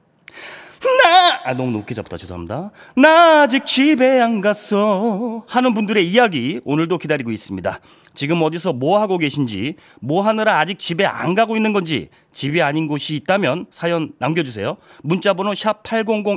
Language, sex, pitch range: Korean, male, 145-210 Hz